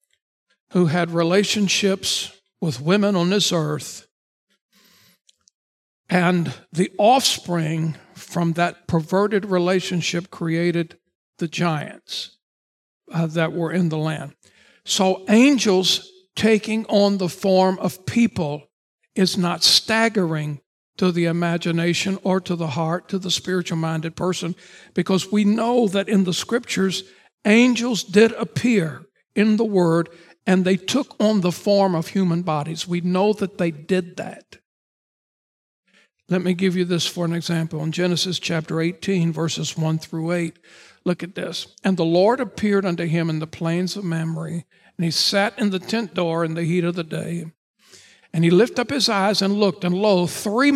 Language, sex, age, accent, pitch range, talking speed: English, male, 60-79, American, 170-200 Hz, 155 wpm